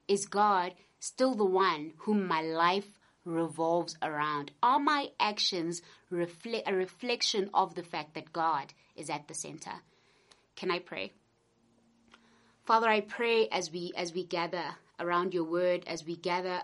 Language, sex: English, female